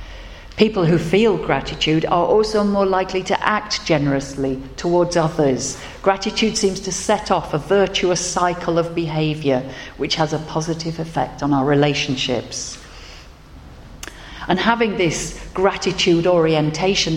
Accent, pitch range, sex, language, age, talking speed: British, 140-190 Hz, female, English, 50-69, 125 wpm